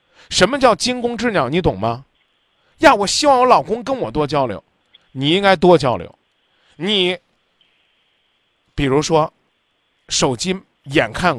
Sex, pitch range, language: male, 145-205 Hz, Chinese